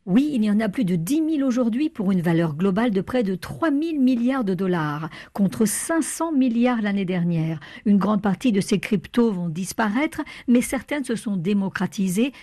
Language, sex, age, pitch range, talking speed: French, female, 50-69, 180-245 Hz, 195 wpm